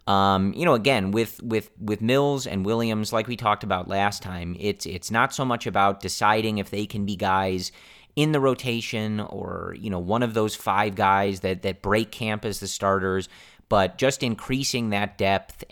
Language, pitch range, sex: English, 95-120 Hz, male